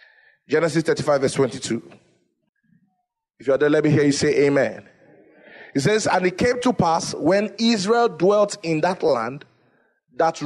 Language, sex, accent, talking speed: English, male, Nigerian, 160 wpm